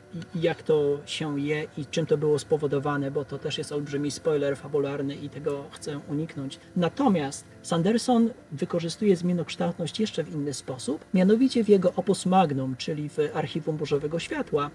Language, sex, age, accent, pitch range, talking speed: Polish, male, 40-59, native, 150-190 Hz, 155 wpm